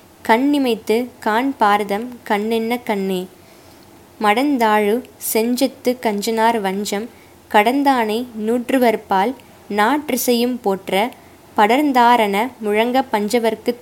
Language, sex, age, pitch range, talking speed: Tamil, female, 20-39, 205-245 Hz, 70 wpm